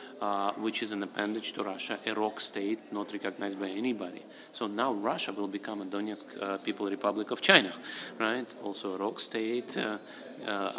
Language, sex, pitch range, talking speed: English, male, 100-120 Hz, 180 wpm